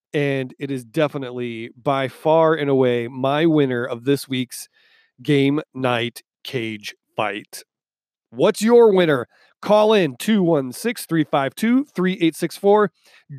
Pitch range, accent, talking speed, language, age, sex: 130-180 Hz, American, 105 wpm, English, 30-49, male